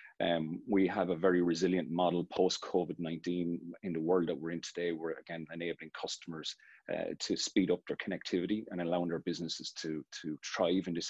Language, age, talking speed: English, 30-49, 185 wpm